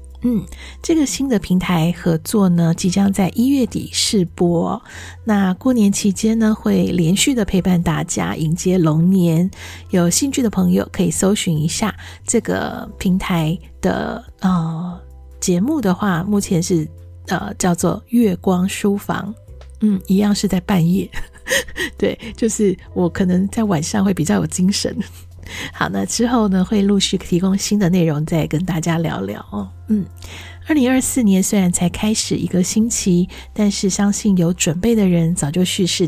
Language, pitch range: Chinese, 160-205 Hz